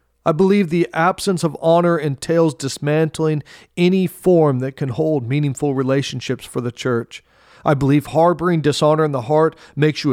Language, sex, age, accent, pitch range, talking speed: English, male, 40-59, American, 120-155 Hz, 160 wpm